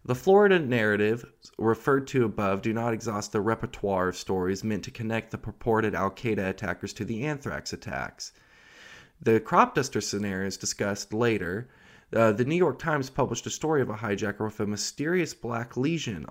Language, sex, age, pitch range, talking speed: English, male, 20-39, 95-125 Hz, 175 wpm